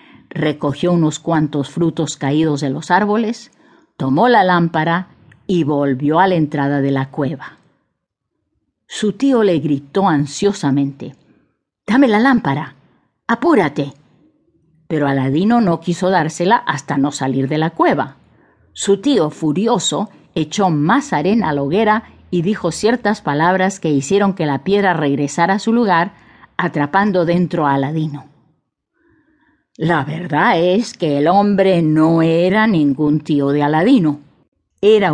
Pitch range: 150-200 Hz